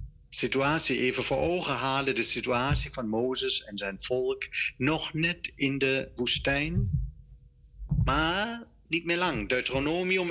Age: 60-79